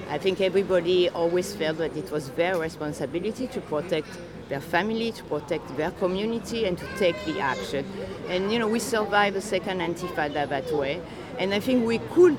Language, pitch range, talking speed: Hebrew, 165-210 Hz, 185 wpm